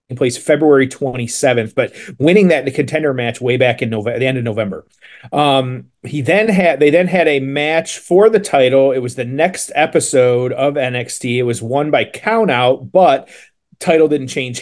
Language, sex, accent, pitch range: English, male, American, 125-155 Hz